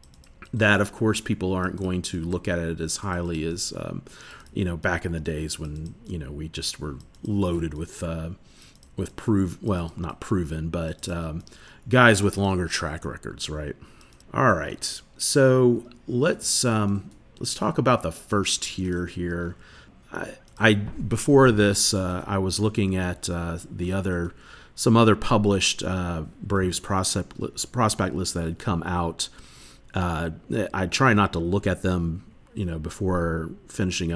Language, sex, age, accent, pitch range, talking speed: English, male, 40-59, American, 85-105 Hz, 160 wpm